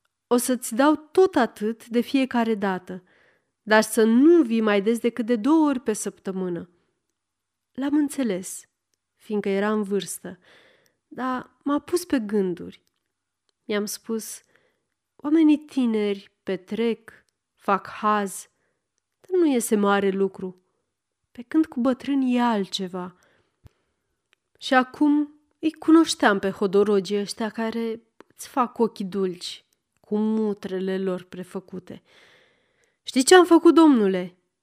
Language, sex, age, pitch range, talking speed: Romanian, female, 30-49, 200-275 Hz, 125 wpm